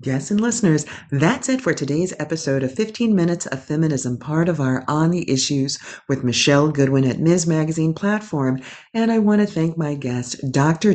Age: 40-59